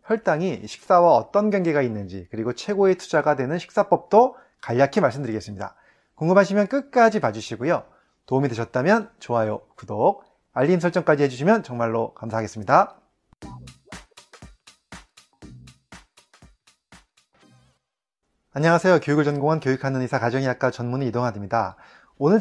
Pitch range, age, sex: 120-185 Hz, 30-49, male